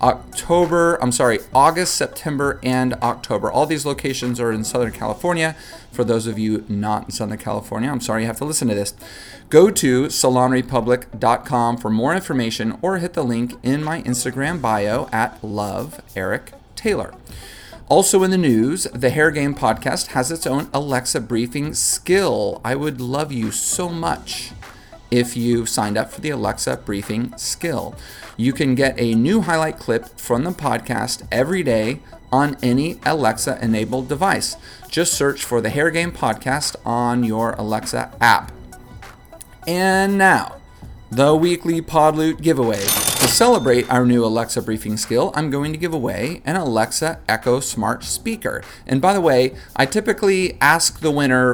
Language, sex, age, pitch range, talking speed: English, male, 30-49, 115-155 Hz, 160 wpm